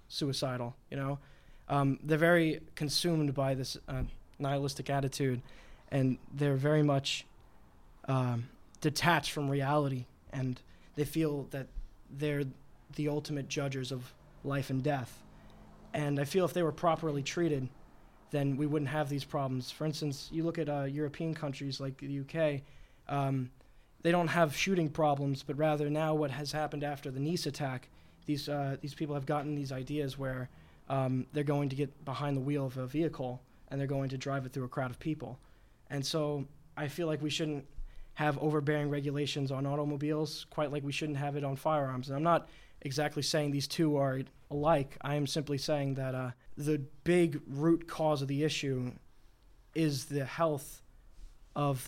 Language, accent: English, American